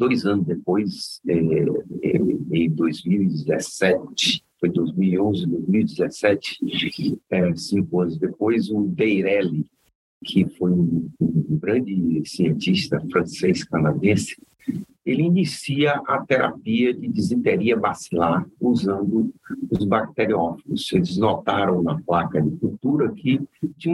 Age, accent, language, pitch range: 60-79, Brazilian, Portuguese, 100-155 Hz